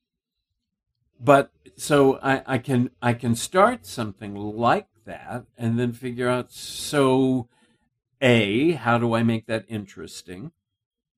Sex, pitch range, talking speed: male, 110-135 Hz, 125 wpm